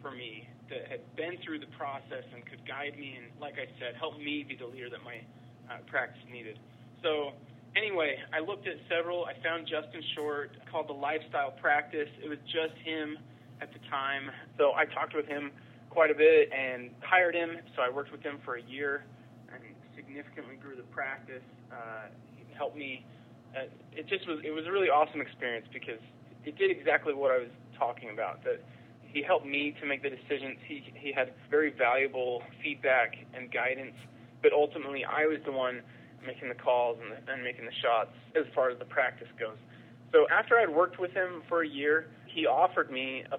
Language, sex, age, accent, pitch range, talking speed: English, male, 20-39, American, 125-150 Hz, 195 wpm